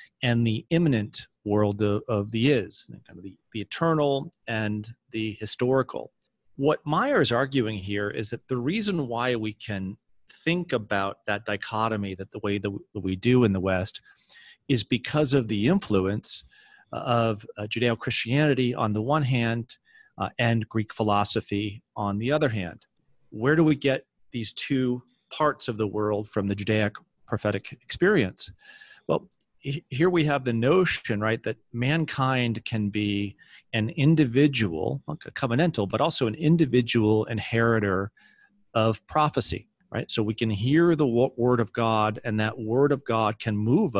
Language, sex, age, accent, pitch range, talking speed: English, male, 40-59, American, 105-130 Hz, 150 wpm